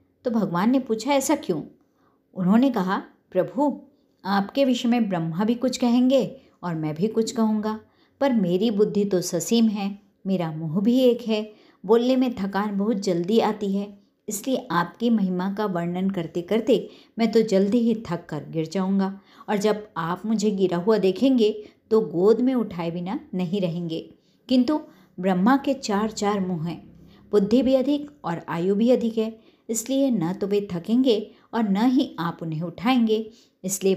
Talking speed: 170 wpm